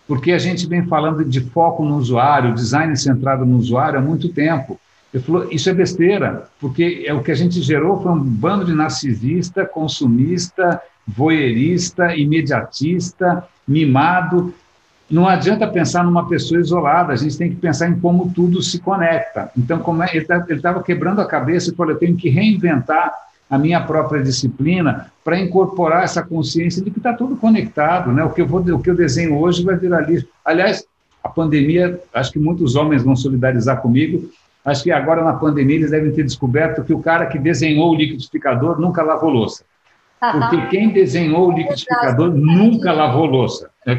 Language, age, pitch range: English, 60-79, 145-175 Hz